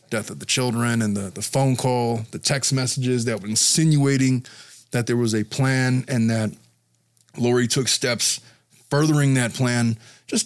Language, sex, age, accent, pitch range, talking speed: English, male, 20-39, American, 115-140 Hz, 165 wpm